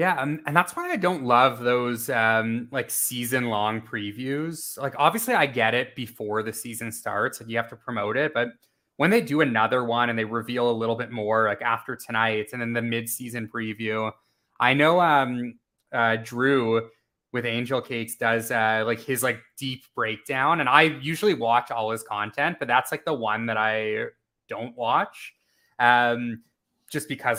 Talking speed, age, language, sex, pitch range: 185 wpm, 20-39, English, male, 115-140 Hz